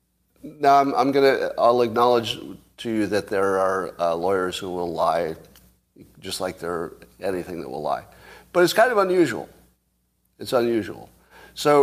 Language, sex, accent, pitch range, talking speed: English, male, American, 100-140 Hz, 155 wpm